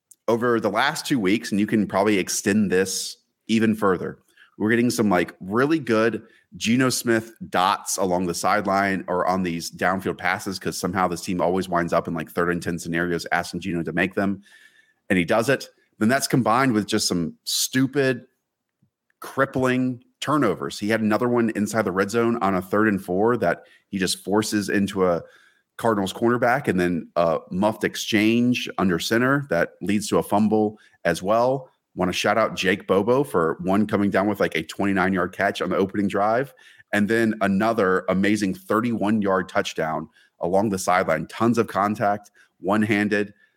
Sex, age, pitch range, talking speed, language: male, 30-49, 90-110 Hz, 180 wpm, English